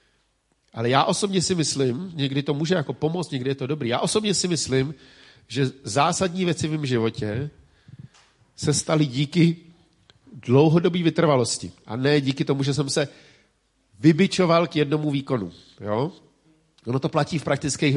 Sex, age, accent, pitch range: male, 50-69, native, 120-150 Hz